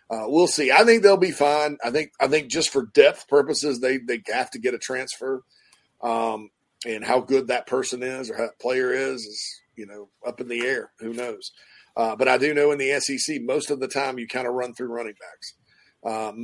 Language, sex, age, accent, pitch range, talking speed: English, male, 40-59, American, 120-145 Hz, 230 wpm